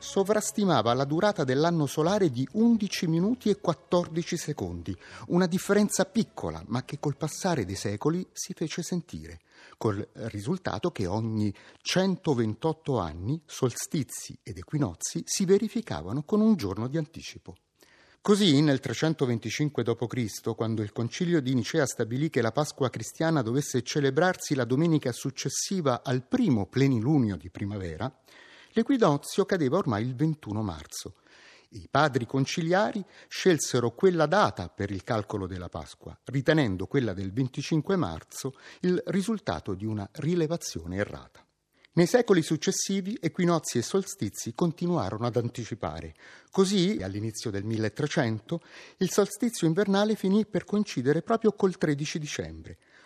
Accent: native